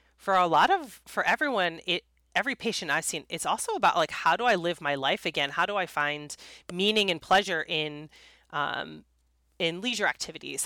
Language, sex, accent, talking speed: English, female, American, 190 wpm